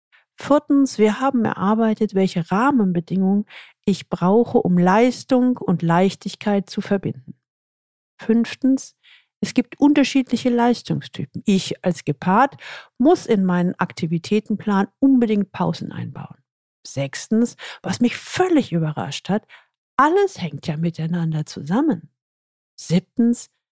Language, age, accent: German, 50-69, German